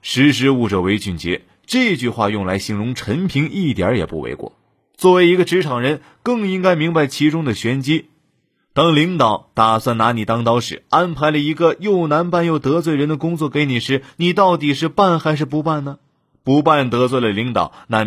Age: 30-49